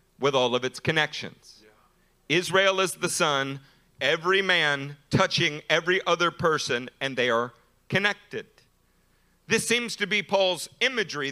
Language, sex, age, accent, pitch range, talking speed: English, male, 50-69, American, 165-260 Hz, 135 wpm